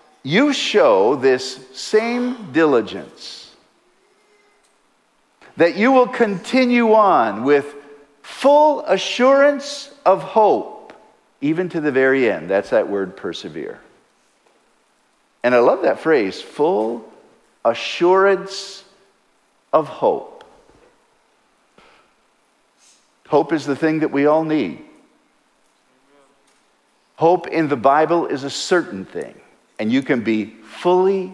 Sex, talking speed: male, 105 wpm